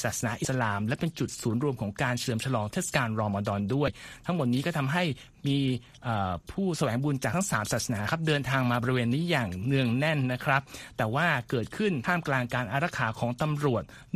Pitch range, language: 120-155 Hz, Thai